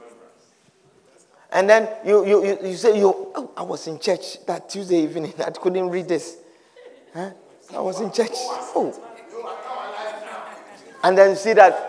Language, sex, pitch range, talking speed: English, male, 235-345 Hz, 155 wpm